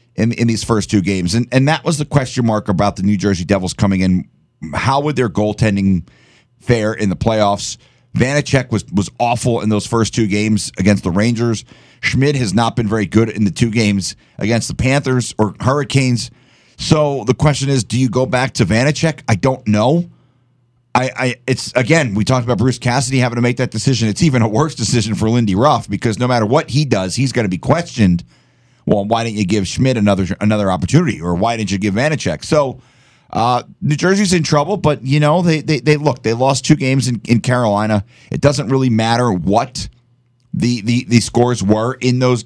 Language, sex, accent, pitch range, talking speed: English, male, American, 110-135 Hz, 210 wpm